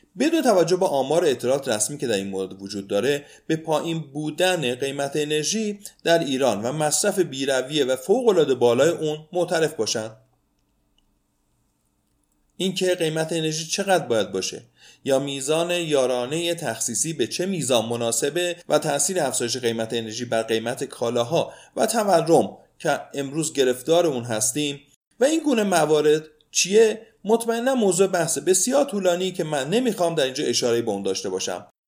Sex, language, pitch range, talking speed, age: male, Persian, 130-180 Hz, 145 wpm, 30-49